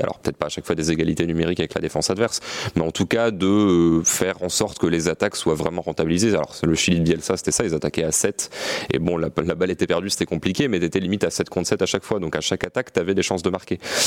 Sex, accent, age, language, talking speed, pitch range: male, French, 30-49, French, 285 wpm, 80-100 Hz